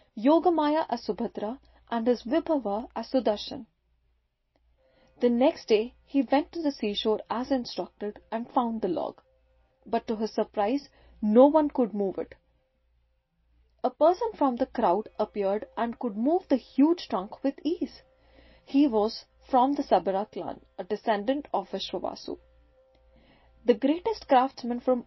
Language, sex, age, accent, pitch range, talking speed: English, female, 30-49, Indian, 210-275 Hz, 140 wpm